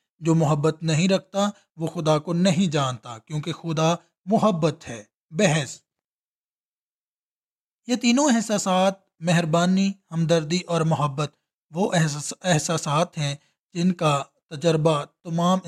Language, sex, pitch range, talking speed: English, male, 160-190 Hz, 105 wpm